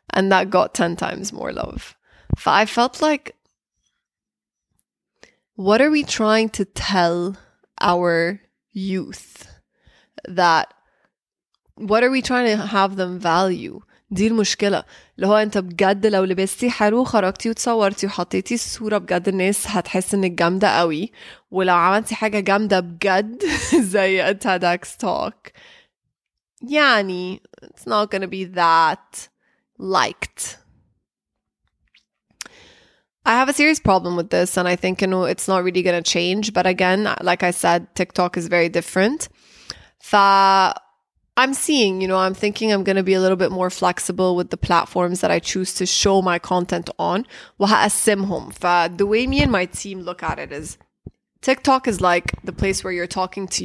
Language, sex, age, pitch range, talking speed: English, female, 20-39, 180-215 Hz, 150 wpm